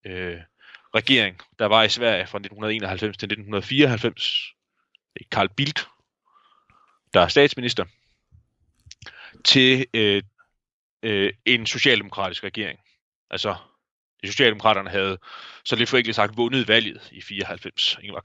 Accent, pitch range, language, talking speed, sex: native, 105-130 Hz, Danish, 110 wpm, male